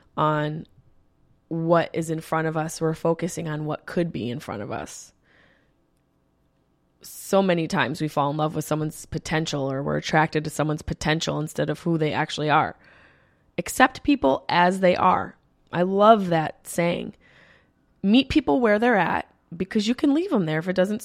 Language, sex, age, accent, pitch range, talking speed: English, female, 20-39, American, 155-190 Hz, 175 wpm